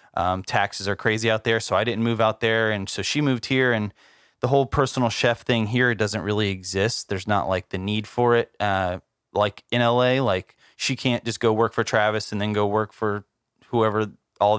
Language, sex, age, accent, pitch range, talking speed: English, male, 20-39, American, 105-125 Hz, 220 wpm